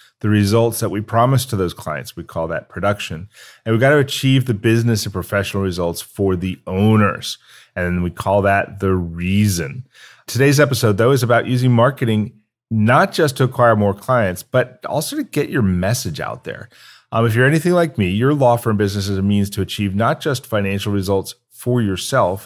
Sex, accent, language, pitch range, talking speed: male, American, English, 95-125 Hz, 195 wpm